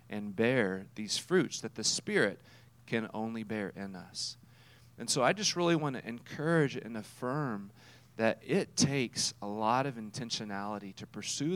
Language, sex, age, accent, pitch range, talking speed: English, male, 40-59, American, 110-145 Hz, 160 wpm